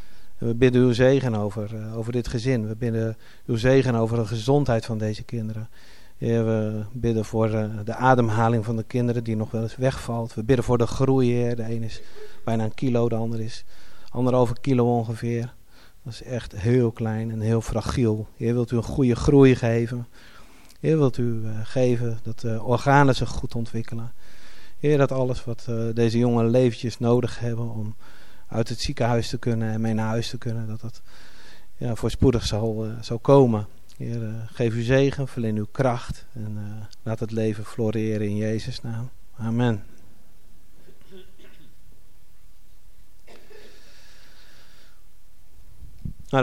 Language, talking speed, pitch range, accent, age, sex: Dutch, 155 wpm, 110-125 Hz, Dutch, 40-59, male